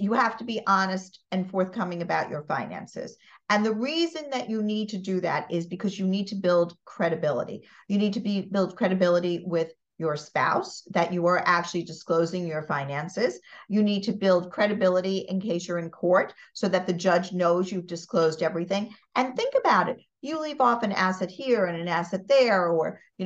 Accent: American